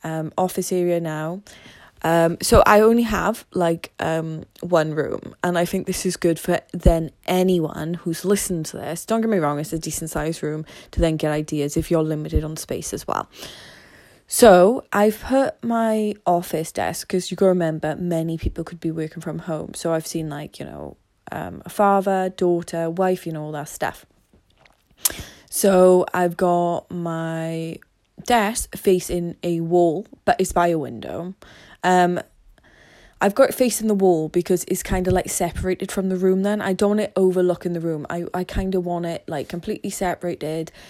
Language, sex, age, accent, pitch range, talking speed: English, female, 20-39, British, 165-185 Hz, 180 wpm